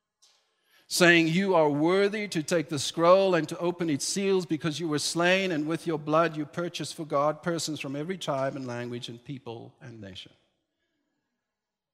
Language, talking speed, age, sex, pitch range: English, 175 wpm, 60-79, male, 145-185 Hz